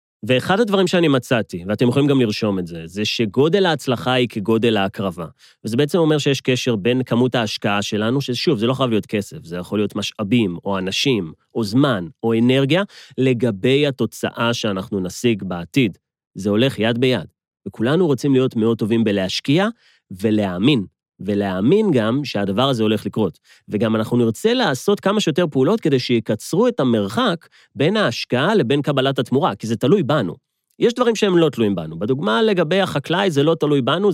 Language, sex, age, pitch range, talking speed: Hebrew, male, 30-49, 115-185 Hz, 160 wpm